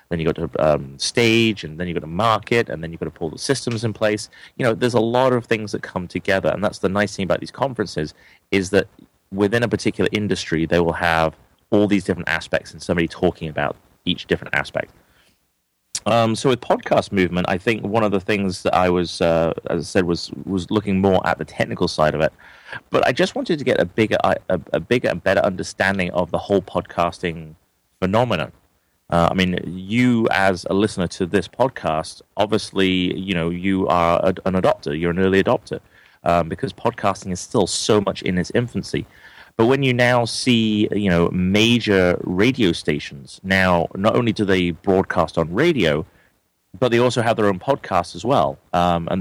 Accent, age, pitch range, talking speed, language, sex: British, 30-49, 85-105 Hz, 205 wpm, English, male